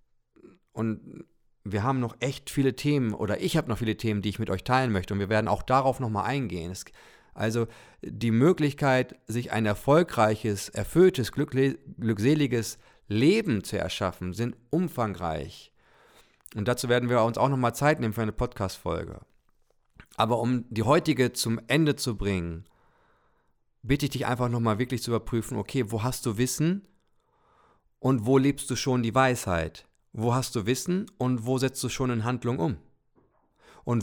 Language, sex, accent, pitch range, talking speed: German, male, German, 110-135 Hz, 160 wpm